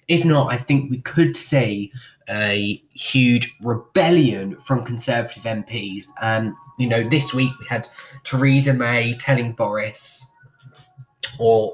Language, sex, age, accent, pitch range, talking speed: English, male, 10-29, British, 115-140 Hz, 130 wpm